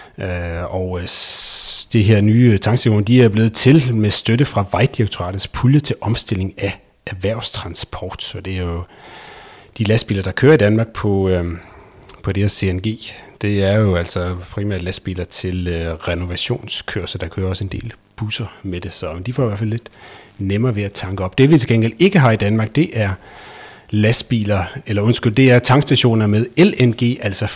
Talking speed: 175 wpm